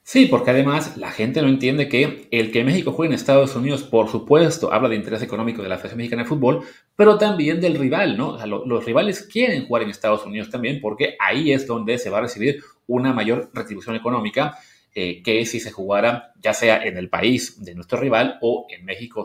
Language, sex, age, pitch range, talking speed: Spanish, male, 30-49, 115-160 Hz, 220 wpm